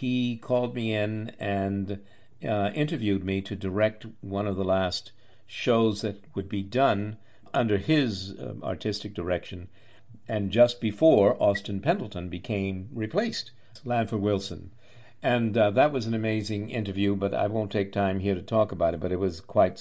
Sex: male